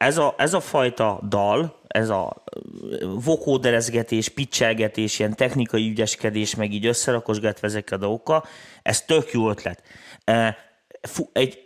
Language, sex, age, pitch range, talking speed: Hungarian, male, 30-49, 110-140 Hz, 125 wpm